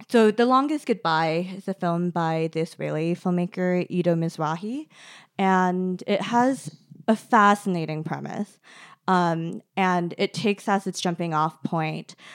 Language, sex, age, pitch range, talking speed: English, female, 20-39, 165-190 Hz, 135 wpm